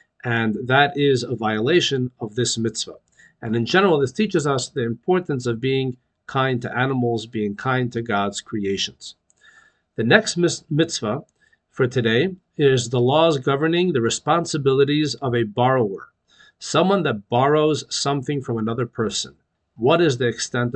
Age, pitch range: 50-69, 120-155 Hz